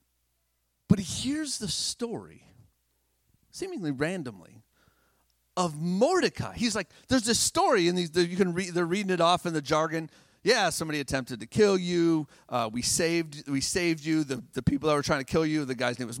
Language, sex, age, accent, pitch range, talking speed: English, male, 40-59, American, 150-235 Hz, 180 wpm